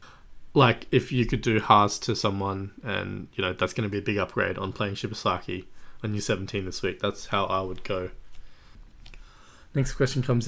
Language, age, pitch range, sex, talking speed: English, 20-39, 100-120 Hz, male, 195 wpm